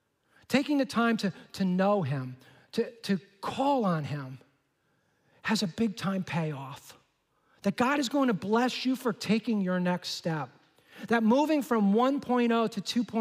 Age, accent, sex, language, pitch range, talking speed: 40-59, American, male, English, 155-205 Hz, 150 wpm